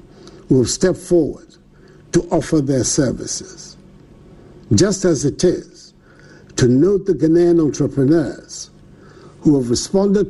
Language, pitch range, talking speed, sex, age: English, 150-180 Hz, 110 wpm, male, 60-79